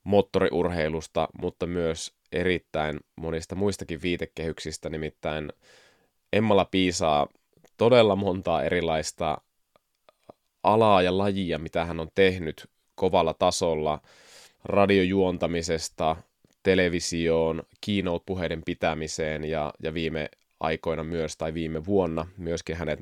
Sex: male